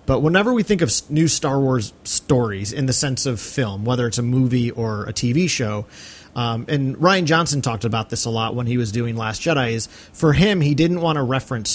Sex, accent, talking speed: male, American, 230 wpm